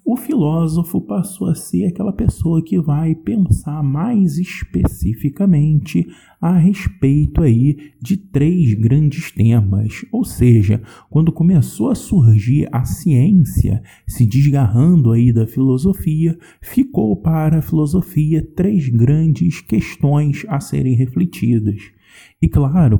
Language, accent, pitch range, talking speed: Portuguese, Brazilian, 115-165 Hz, 110 wpm